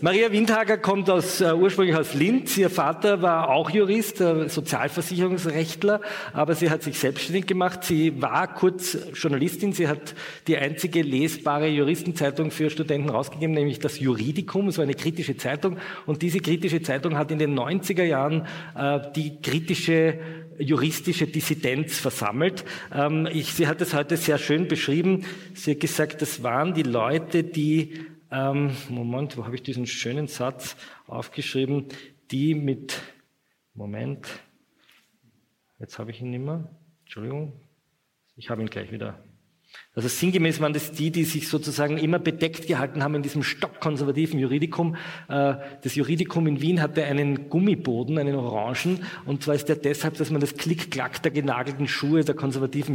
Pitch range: 140-165 Hz